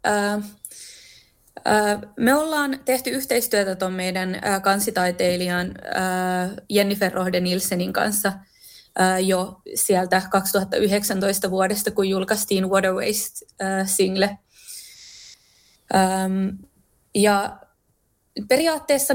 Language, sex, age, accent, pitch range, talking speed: Finnish, female, 20-39, native, 185-220 Hz, 85 wpm